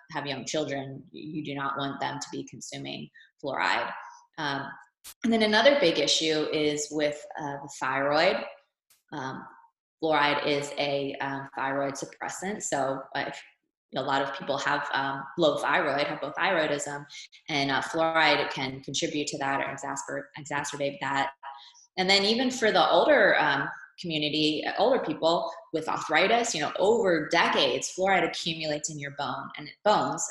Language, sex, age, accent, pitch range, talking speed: English, female, 20-39, American, 140-175 Hz, 160 wpm